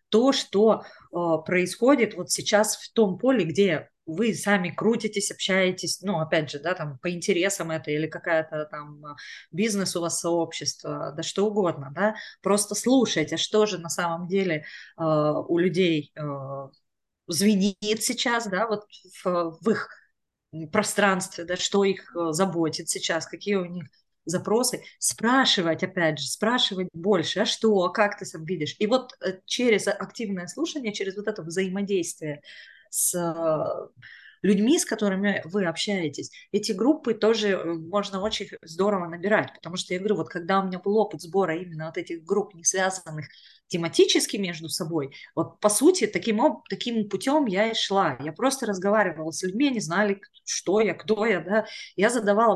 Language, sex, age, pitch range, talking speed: Russian, female, 20-39, 170-220 Hz, 160 wpm